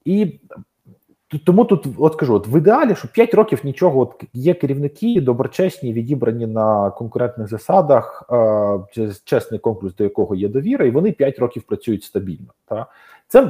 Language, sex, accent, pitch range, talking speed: Ukrainian, male, native, 110-155 Hz, 155 wpm